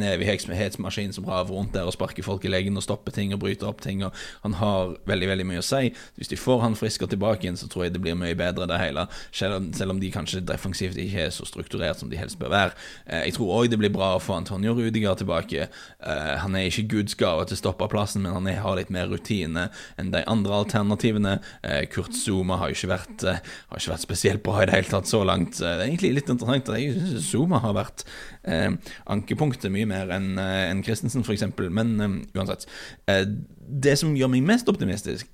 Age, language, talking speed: 20-39, English, 230 wpm